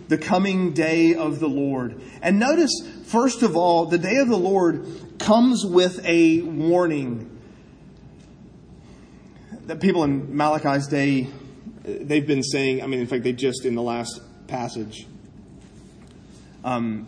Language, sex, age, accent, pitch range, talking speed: English, male, 30-49, American, 140-175 Hz, 135 wpm